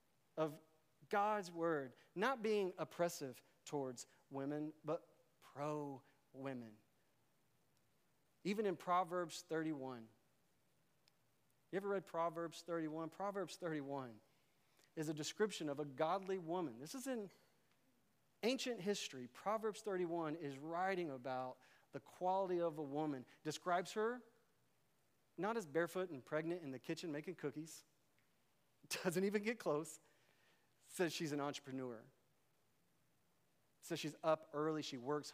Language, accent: English, American